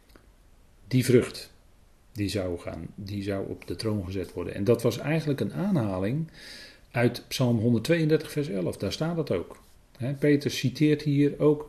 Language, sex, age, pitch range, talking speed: Dutch, male, 40-59, 100-140 Hz, 160 wpm